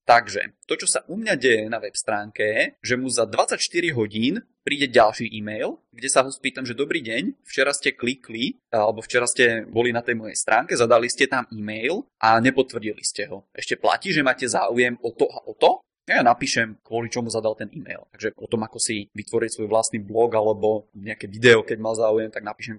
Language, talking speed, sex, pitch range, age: Czech, 210 wpm, male, 110-135 Hz, 20-39